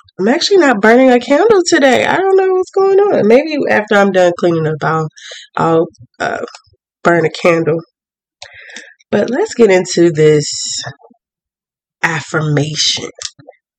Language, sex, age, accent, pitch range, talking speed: English, female, 20-39, American, 155-230 Hz, 135 wpm